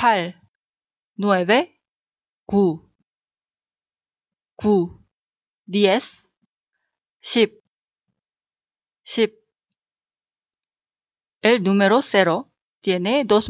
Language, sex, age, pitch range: Korean, female, 30-49, 185-240 Hz